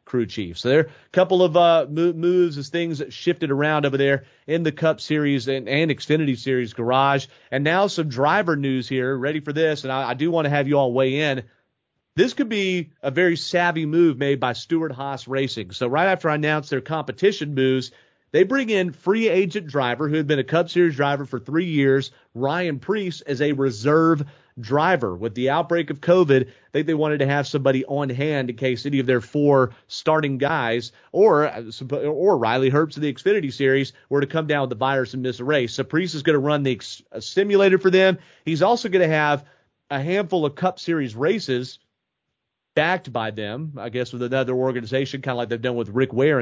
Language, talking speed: English, 215 wpm